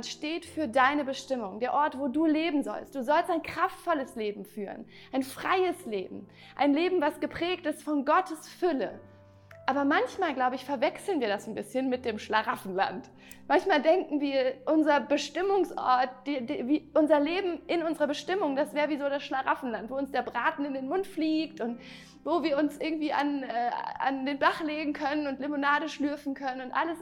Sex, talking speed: female, 185 wpm